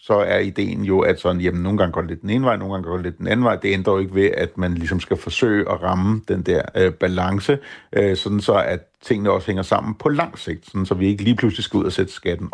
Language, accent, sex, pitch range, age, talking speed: Danish, native, male, 95-115 Hz, 60-79, 290 wpm